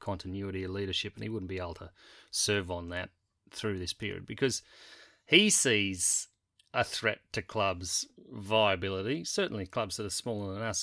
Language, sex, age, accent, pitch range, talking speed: English, male, 30-49, Australian, 95-115 Hz, 165 wpm